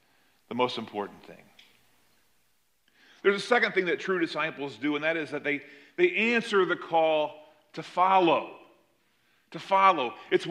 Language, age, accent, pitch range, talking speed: English, 40-59, American, 170-220 Hz, 150 wpm